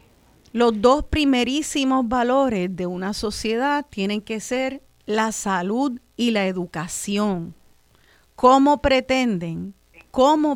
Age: 40-59